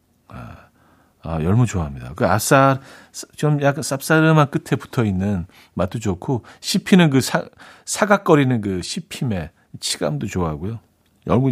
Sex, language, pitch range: male, Korean, 95-140 Hz